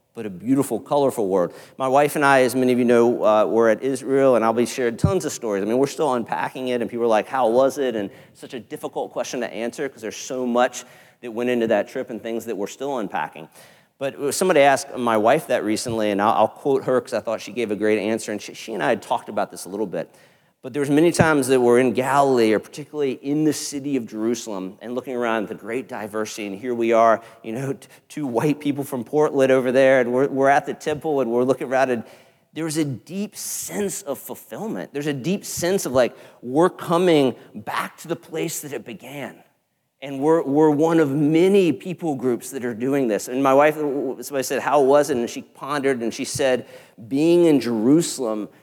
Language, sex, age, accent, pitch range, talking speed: English, male, 40-59, American, 115-145 Hz, 235 wpm